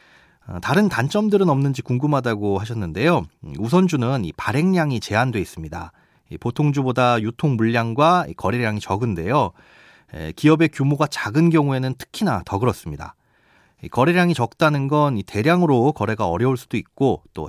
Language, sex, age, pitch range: Korean, male, 30-49, 110-160 Hz